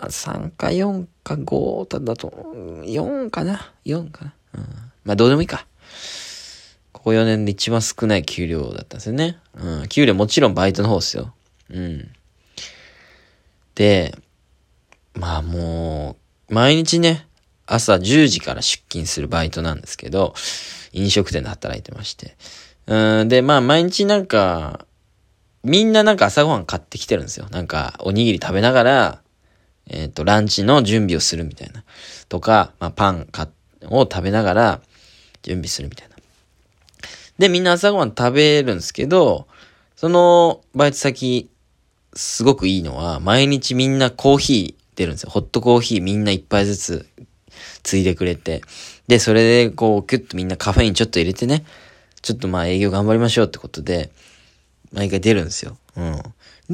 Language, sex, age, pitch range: Japanese, male, 20-39, 90-130 Hz